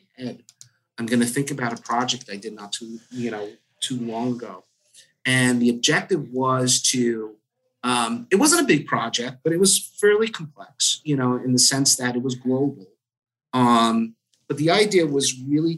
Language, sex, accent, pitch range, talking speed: English, male, American, 115-135 Hz, 180 wpm